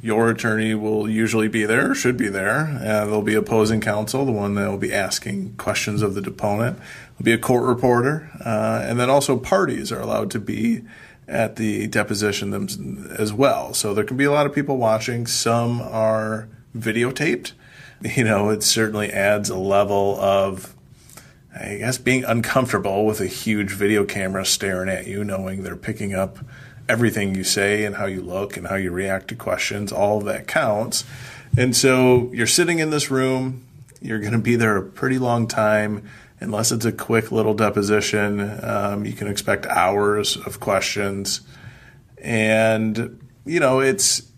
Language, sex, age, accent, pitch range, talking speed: English, male, 30-49, American, 105-125 Hz, 175 wpm